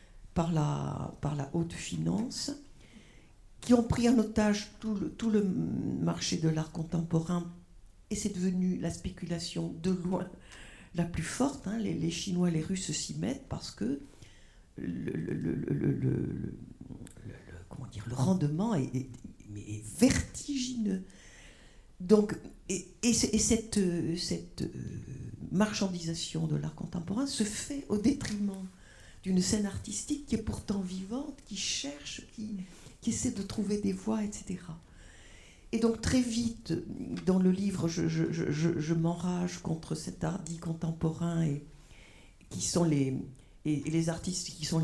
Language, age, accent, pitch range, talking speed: French, 50-69, French, 150-195 Hz, 135 wpm